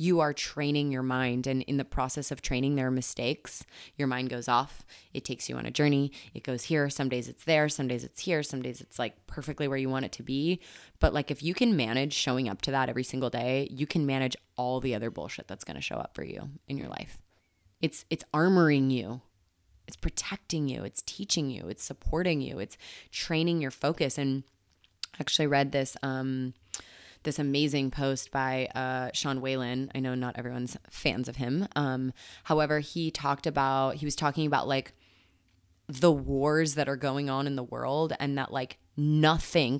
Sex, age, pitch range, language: female, 20-39, 125-150 Hz, English